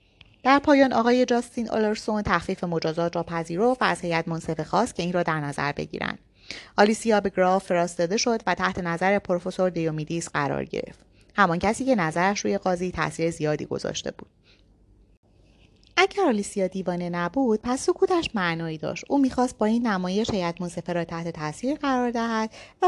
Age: 30-49